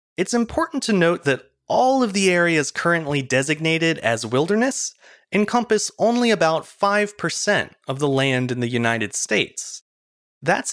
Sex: male